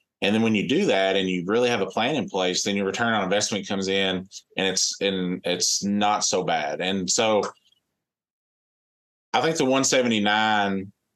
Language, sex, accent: English, male, American